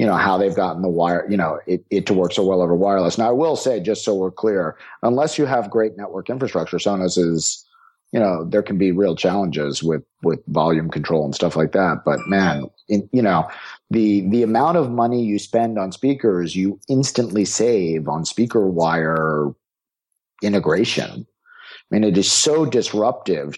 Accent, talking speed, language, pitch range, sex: American, 190 wpm, English, 90-125 Hz, male